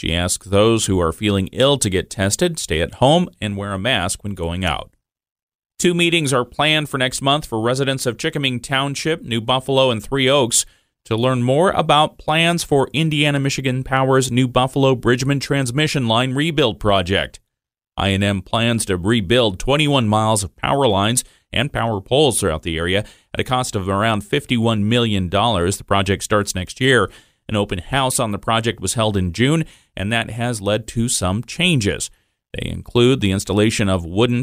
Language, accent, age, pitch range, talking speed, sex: English, American, 30-49, 100-130 Hz, 180 wpm, male